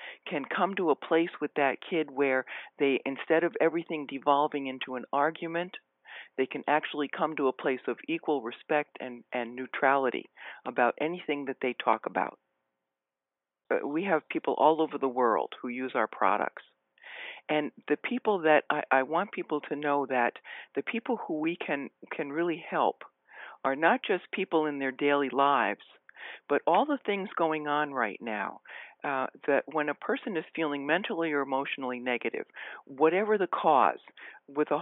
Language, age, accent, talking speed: English, 60-79, American, 170 wpm